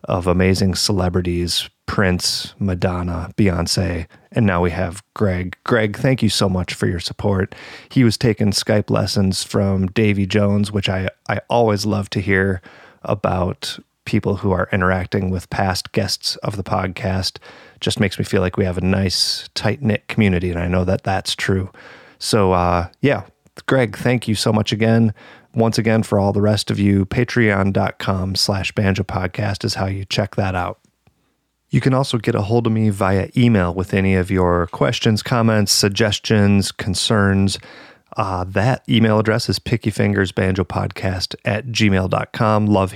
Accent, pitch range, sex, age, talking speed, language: American, 95-110 Hz, male, 30-49, 160 wpm, English